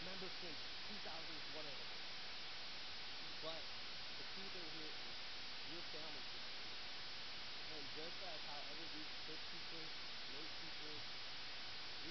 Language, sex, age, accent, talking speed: English, male, 30-49, American, 120 wpm